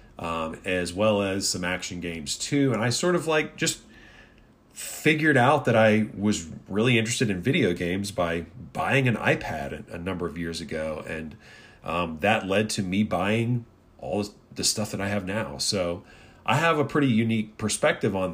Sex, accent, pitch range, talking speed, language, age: male, American, 95-115 Hz, 180 wpm, English, 40-59